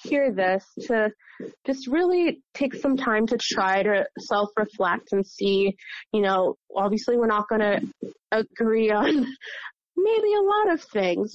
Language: English